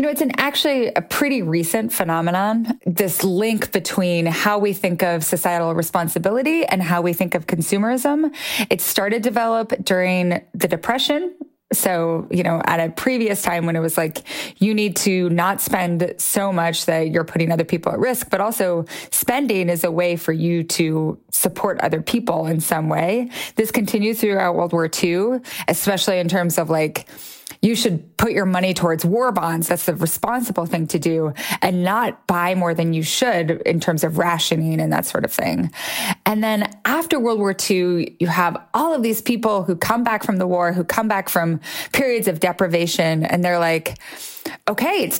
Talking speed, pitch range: 190 wpm, 170-225 Hz